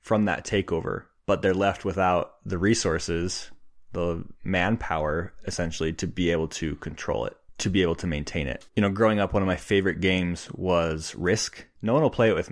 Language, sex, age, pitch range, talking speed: English, male, 20-39, 85-105 Hz, 195 wpm